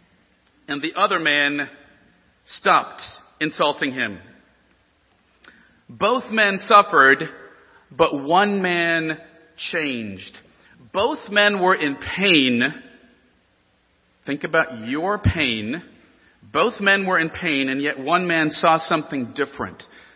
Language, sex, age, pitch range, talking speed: English, male, 40-59, 130-190 Hz, 105 wpm